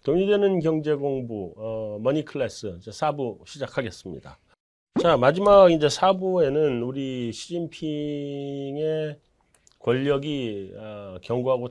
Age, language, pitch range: 40-59, Korean, 110-155 Hz